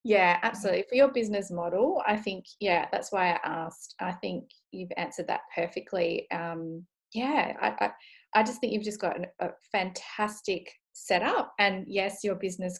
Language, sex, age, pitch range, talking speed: English, female, 20-39, 180-230 Hz, 170 wpm